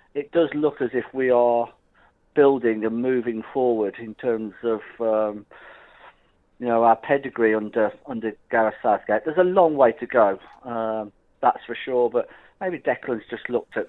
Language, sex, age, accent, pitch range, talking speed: English, male, 40-59, British, 115-130 Hz, 170 wpm